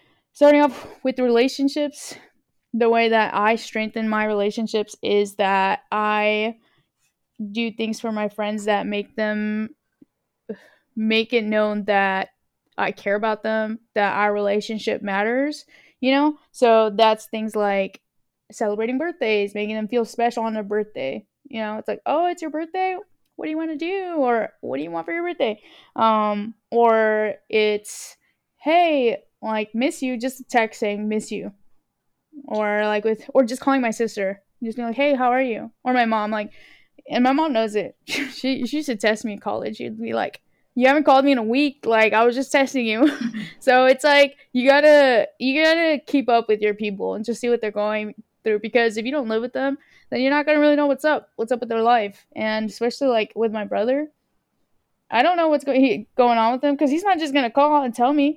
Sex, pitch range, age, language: female, 215-275 Hz, 10-29, English